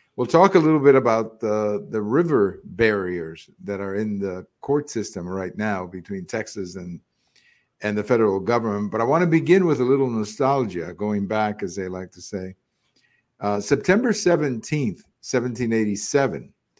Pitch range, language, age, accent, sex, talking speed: 105-130 Hz, English, 50-69, American, male, 160 wpm